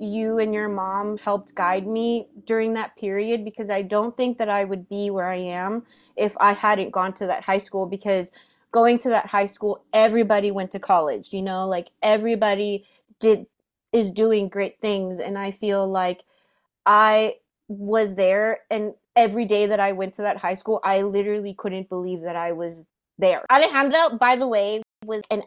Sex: female